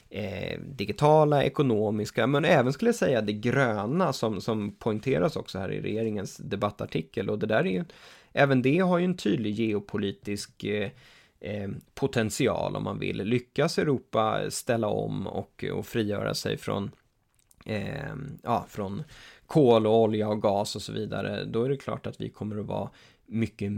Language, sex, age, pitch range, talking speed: English, male, 20-39, 105-130 Hz, 160 wpm